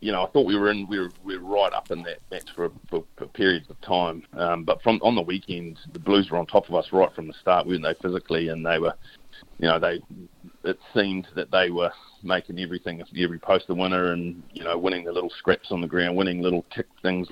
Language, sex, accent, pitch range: English, male, Australian, 85-95 Hz